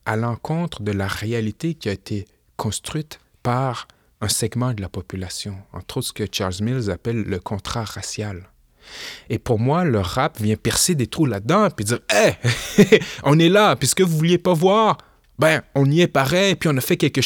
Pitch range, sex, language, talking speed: 105-165 Hz, male, French, 200 wpm